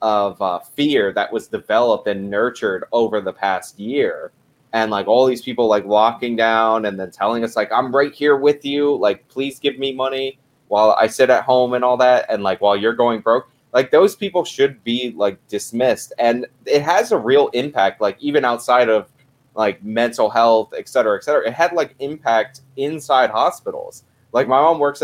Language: English